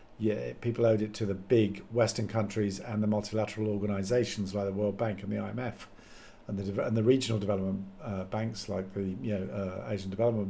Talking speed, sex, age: 200 wpm, male, 50-69